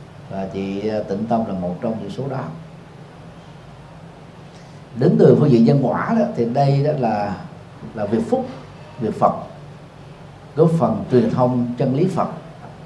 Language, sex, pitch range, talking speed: Vietnamese, male, 120-155 Hz, 155 wpm